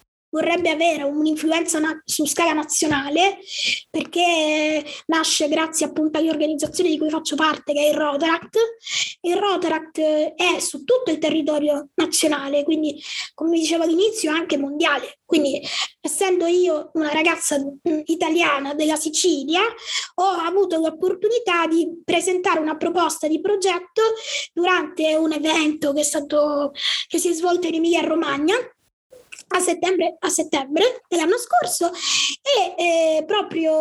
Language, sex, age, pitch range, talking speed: Italian, female, 20-39, 310-360 Hz, 125 wpm